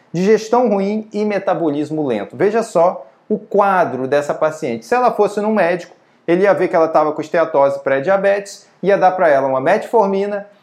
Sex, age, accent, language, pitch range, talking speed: male, 20-39, Brazilian, Portuguese, 150-195 Hz, 175 wpm